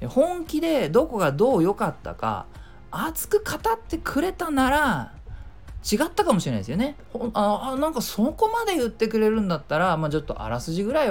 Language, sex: Japanese, male